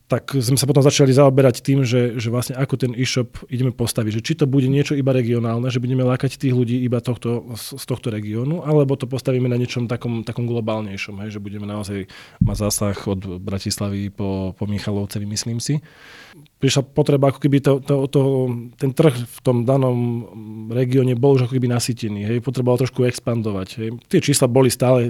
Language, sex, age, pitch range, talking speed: Slovak, male, 20-39, 110-135 Hz, 195 wpm